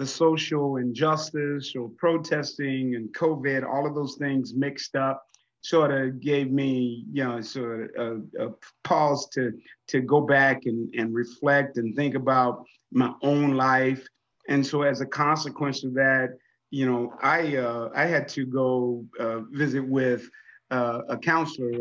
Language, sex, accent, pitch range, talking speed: English, male, American, 130-150 Hz, 160 wpm